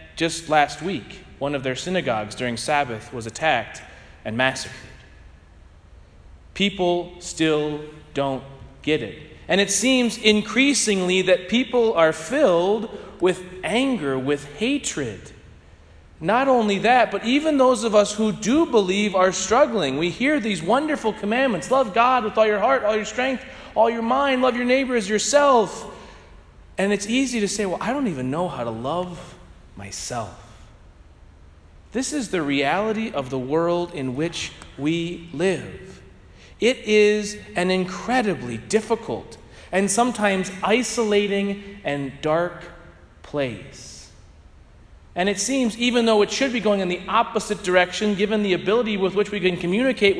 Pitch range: 145-220 Hz